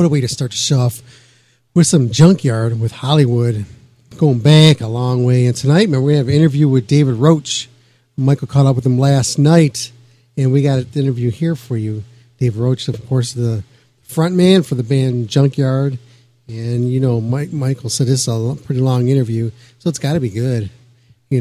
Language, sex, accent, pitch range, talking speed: English, male, American, 120-145 Hz, 200 wpm